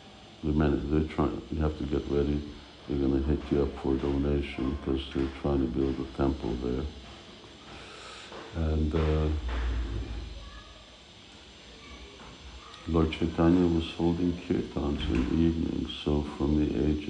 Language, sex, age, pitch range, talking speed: Hungarian, male, 60-79, 65-80 Hz, 135 wpm